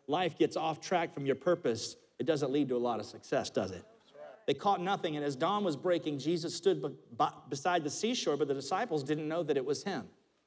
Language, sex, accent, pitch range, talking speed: English, male, American, 150-205 Hz, 225 wpm